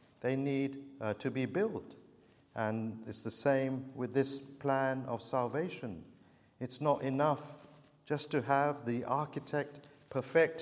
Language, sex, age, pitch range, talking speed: English, male, 50-69, 125-150 Hz, 135 wpm